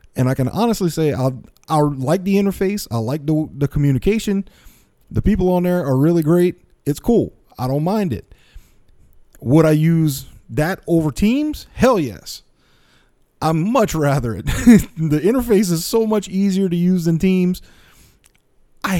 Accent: American